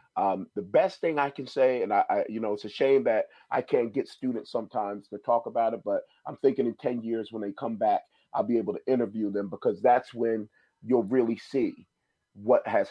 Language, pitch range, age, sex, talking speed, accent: English, 105-135 Hz, 40-59, male, 230 wpm, American